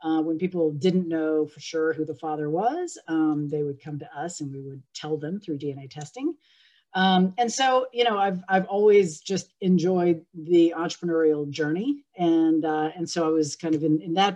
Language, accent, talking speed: English, American, 205 wpm